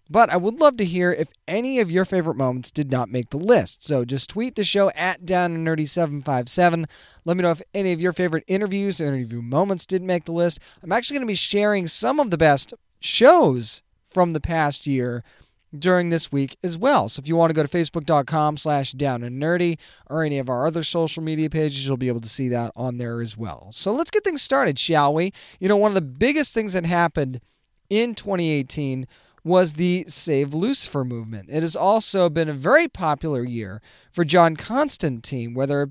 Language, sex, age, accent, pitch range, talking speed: English, male, 20-39, American, 145-185 Hz, 210 wpm